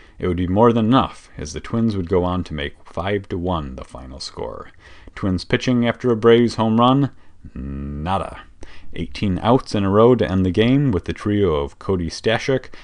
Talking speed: 195 wpm